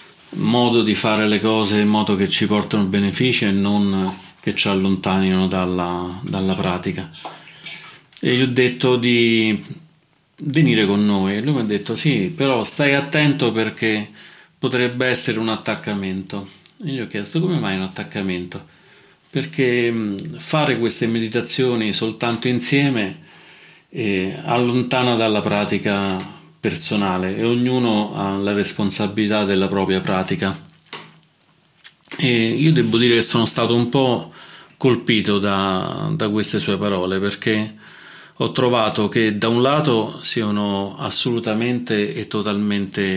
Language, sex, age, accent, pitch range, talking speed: Italian, male, 30-49, native, 100-130 Hz, 130 wpm